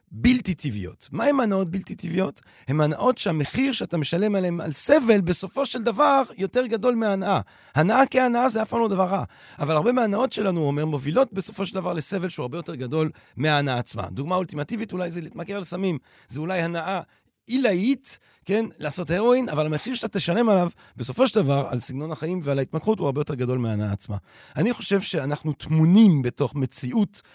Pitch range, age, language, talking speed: 140-205 Hz, 40-59, Hebrew, 185 wpm